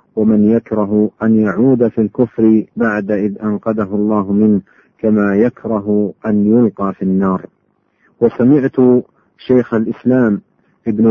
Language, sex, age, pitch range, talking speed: Arabic, male, 50-69, 105-115 Hz, 115 wpm